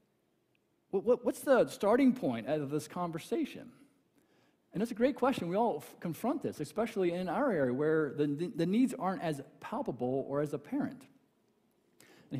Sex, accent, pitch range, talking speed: male, American, 150-215 Hz, 160 wpm